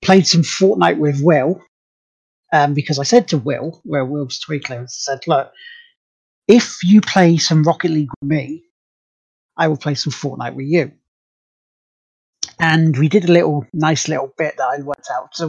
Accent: British